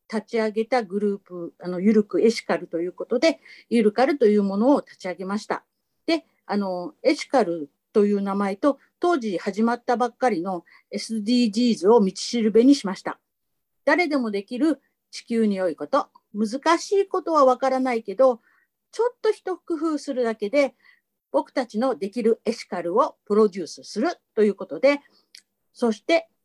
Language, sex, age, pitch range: Japanese, female, 50-69, 200-275 Hz